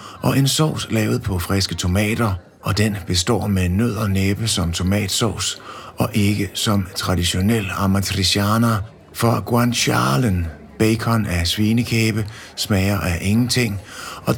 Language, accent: Danish, native